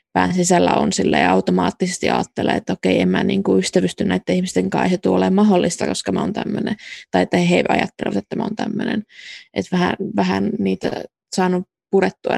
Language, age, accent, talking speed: Finnish, 20-39, native, 180 wpm